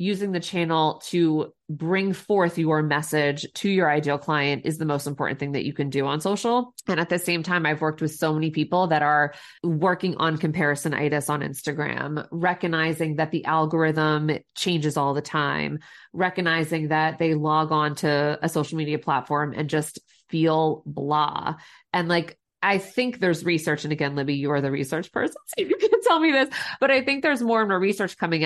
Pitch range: 150-180 Hz